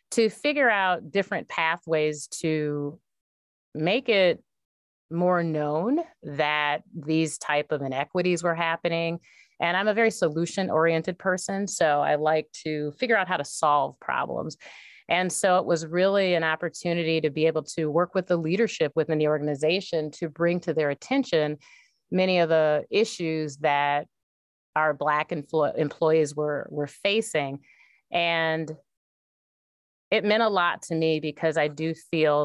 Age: 30-49